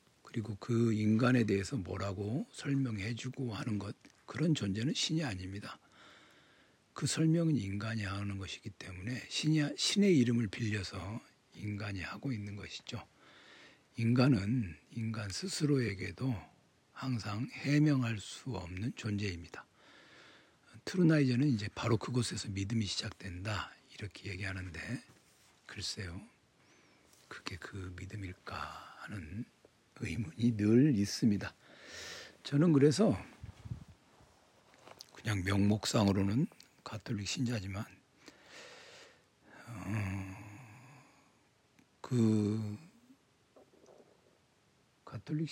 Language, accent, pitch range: Korean, native, 100-135 Hz